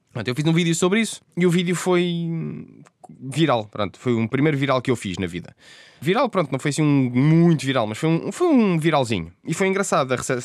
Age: 20-39